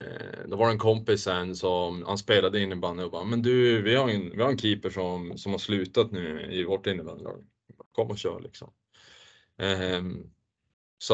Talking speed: 185 wpm